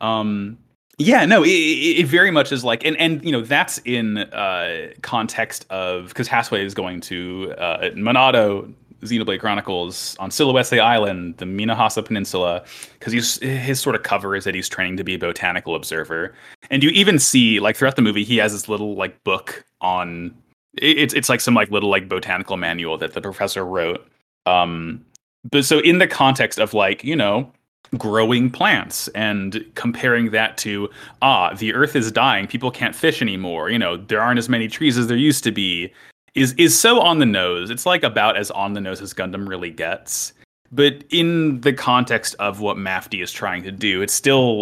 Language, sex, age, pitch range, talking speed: English, male, 20-39, 95-135 Hz, 195 wpm